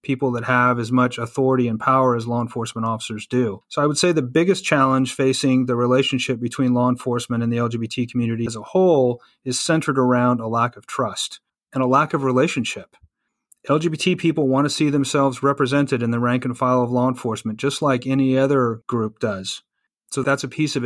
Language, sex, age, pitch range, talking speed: English, male, 30-49, 120-145 Hz, 205 wpm